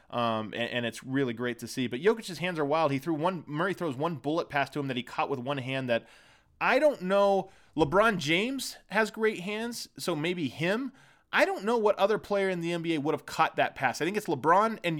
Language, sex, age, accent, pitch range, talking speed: English, male, 20-39, American, 145-195 Hz, 240 wpm